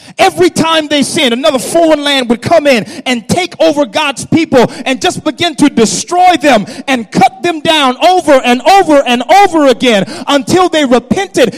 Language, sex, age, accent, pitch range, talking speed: English, male, 30-49, American, 240-310 Hz, 175 wpm